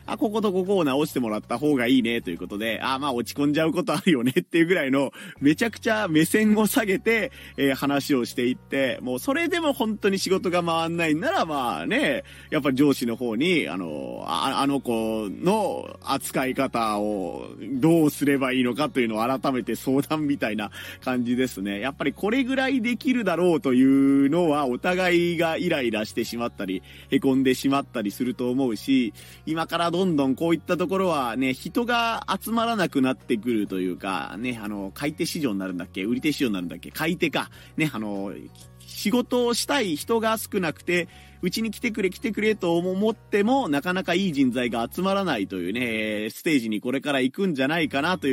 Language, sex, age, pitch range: Japanese, male, 40-59, 120-185 Hz